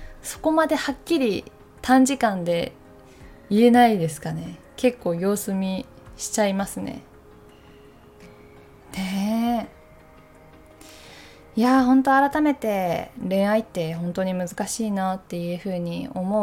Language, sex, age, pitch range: Japanese, female, 20-39, 180-230 Hz